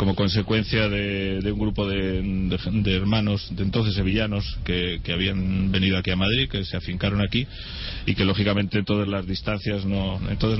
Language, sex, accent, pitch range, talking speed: Spanish, male, Spanish, 95-110 Hz, 180 wpm